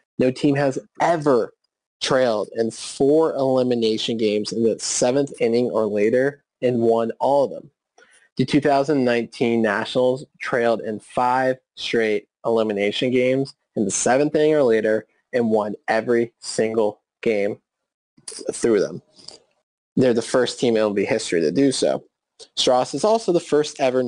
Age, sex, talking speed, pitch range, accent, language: 20-39, male, 145 wpm, 115-140 Hz, American, English